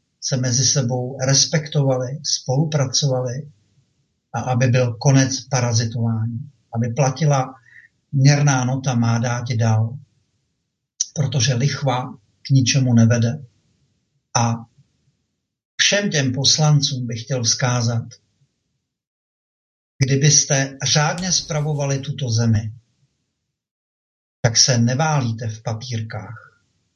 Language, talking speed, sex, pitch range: Czech, 85 wpm, male, 115-135 Hz